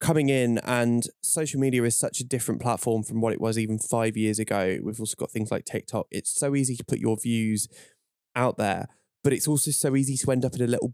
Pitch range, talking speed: 110-125 Hz, 240 wpm